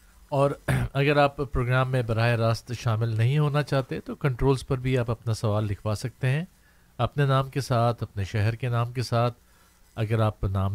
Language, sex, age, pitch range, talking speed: Urdu, male, 50-69, 110-135 Hz, 190 wpm